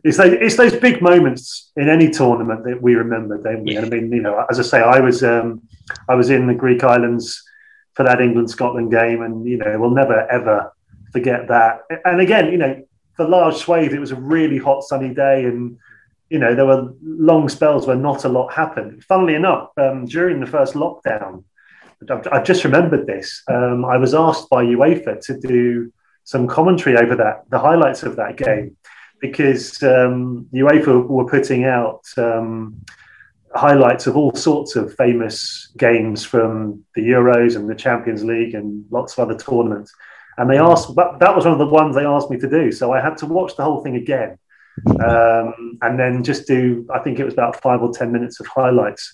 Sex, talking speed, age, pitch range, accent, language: male, 195 wpm, 30-49, 120-155 Hz, British, English